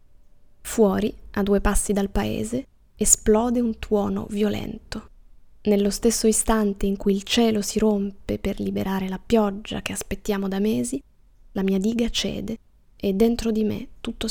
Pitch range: 200-230 Hz